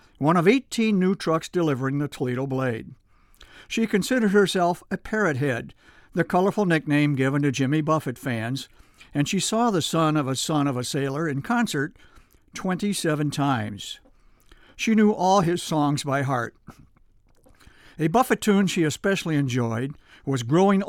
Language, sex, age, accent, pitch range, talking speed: English, male, 60-79, American, 135-175 Hz, 150 wpm